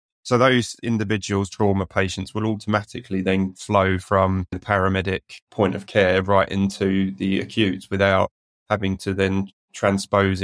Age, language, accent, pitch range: 20-39, English, British, 95-100 Hz